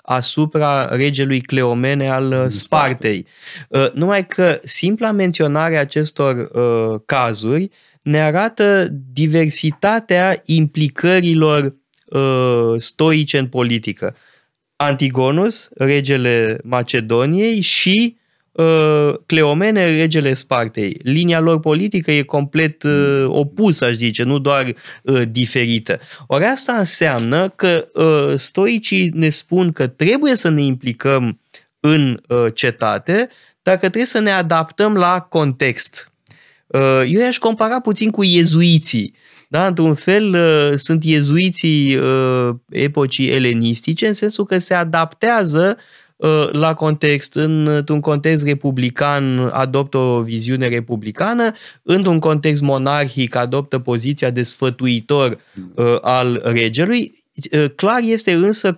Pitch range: 130-175 Hz